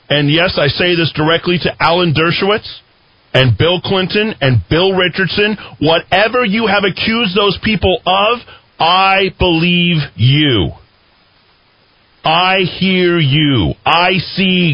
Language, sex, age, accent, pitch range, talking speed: English, male, 40-59, American, 105-170 Hz, 120 wpm